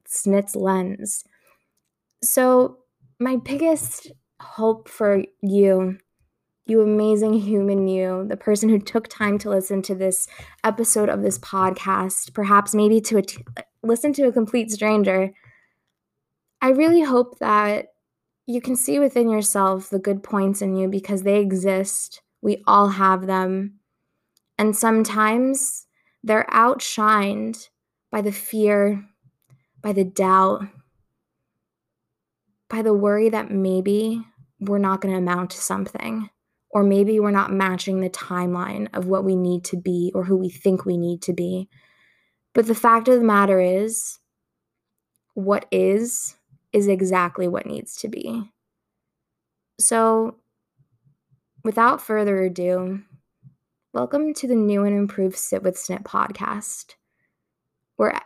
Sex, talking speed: female, 130 wpm